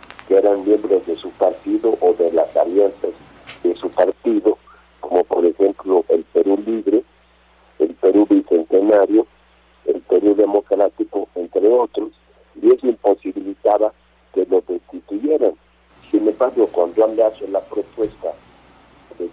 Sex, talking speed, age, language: male, 125 wpm, 50-69, Spanish